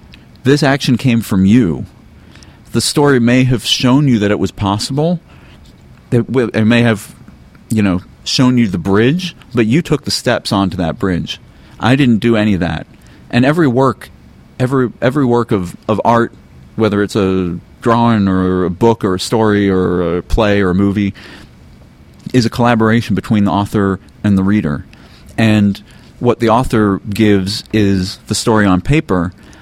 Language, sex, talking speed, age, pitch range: English, male, 165 wpm, 40-59, 95-115 Hz